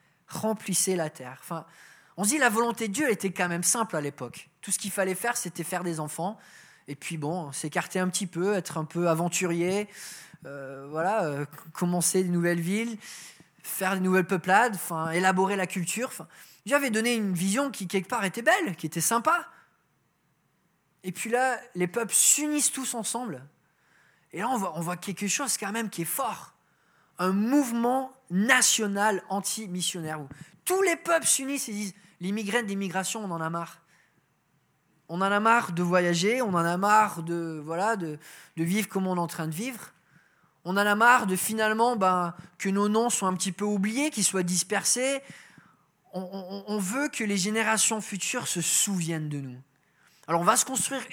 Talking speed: 190 wpm